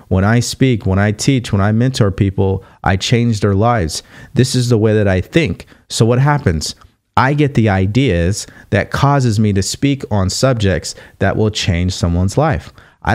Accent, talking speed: American, 185 wpm